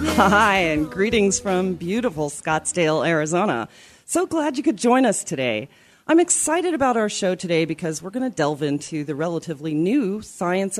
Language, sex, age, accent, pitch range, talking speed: English, female, 40-59, American, 145-220 Hz, 165 wpm